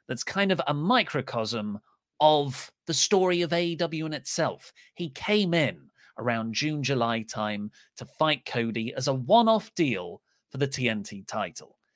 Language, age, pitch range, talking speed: English, 30-49, 120-190 Hz, 150 wpm